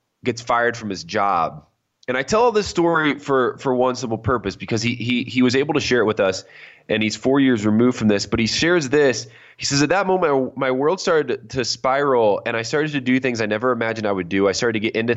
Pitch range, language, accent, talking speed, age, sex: 110-150 Hz, English, American, 255 wpm, 20-39, male